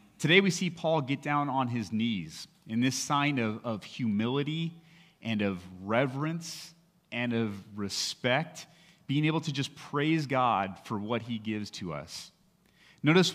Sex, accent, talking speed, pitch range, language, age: male, American, 155 wpm, 115-160 Hz, English, 30-49